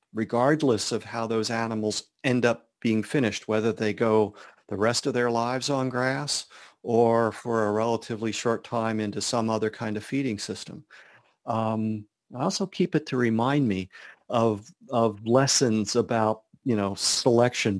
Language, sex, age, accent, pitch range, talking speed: English, male, 50-69, American, 105-125 Hz, 160 wpm